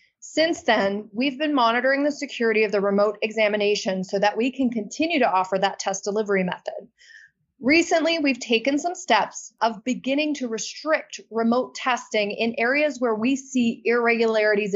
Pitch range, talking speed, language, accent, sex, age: 215-275 Hz, 160 wpm, English, American, female, 30-49